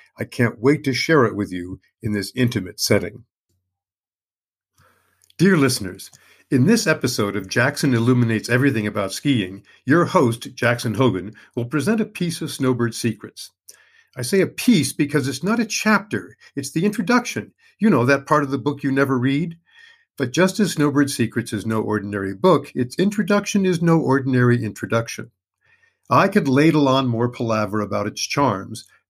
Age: 50-69